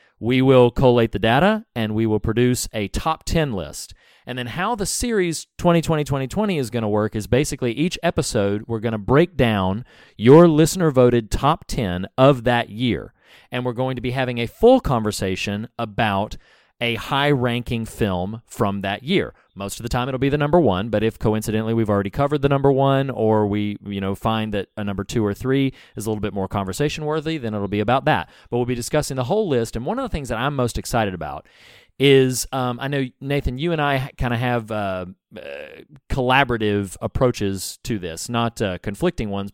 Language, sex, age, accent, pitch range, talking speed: English, male, 40-59, American, 100-130 Hz, 200 wpm